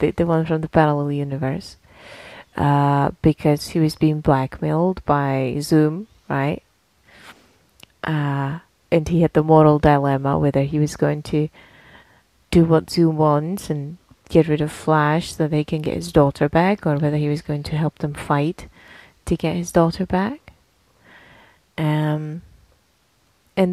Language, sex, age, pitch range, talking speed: English, female, 30-49, 145-180 Hz, 150 wpm